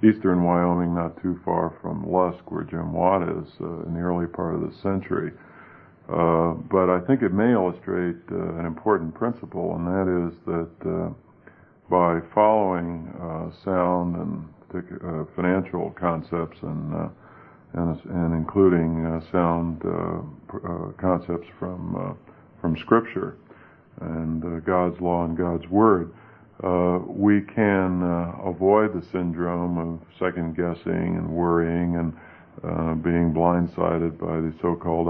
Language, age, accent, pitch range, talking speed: English, 50-69, American, 85-90 Hz, 140 wpm